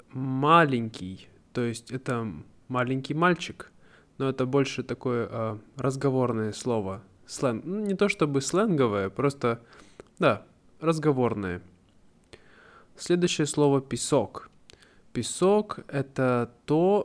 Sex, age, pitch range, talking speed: male, 20-39, 115-145 Hz, 100 wpm